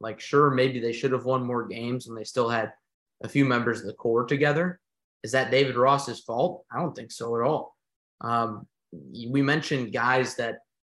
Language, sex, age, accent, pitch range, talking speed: English, male, 20-39, American, 115-140 Hz, 200 wpm